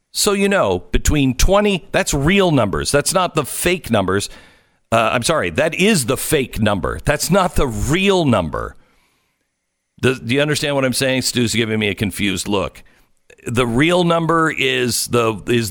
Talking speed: 170 wpm